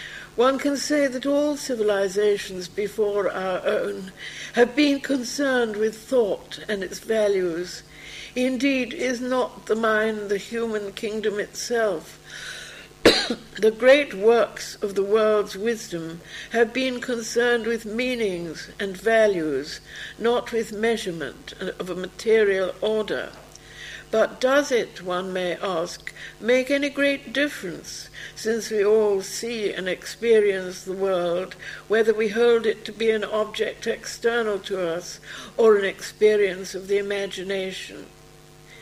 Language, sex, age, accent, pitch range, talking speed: English, female, 60-79, British, 200-245 Hz, 125 wpm